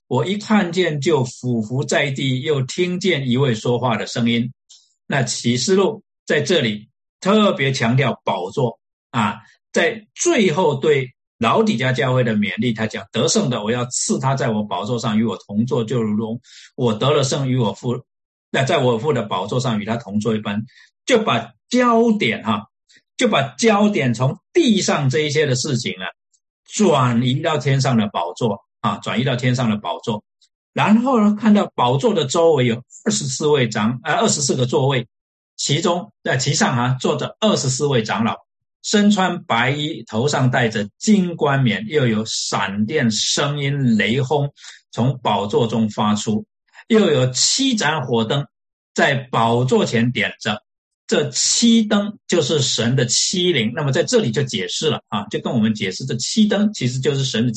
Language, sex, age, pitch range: Chinese, male, 50-69, 115-170 Hz